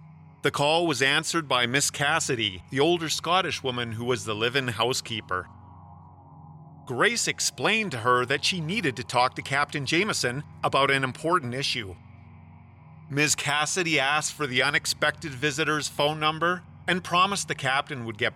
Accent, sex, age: American, male, 40-59